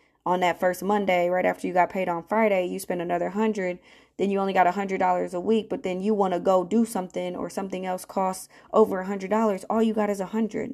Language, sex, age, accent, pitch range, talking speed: English, female, 20-39, American, 165-200 Hz, 255 wpm